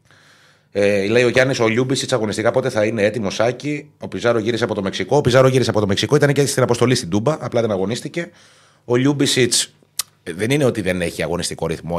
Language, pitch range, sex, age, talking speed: Greek, 95-140 Hz, male, 30-49, 210 wpm